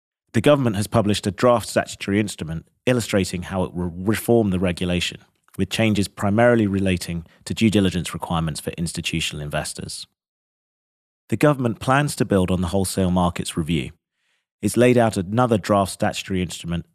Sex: male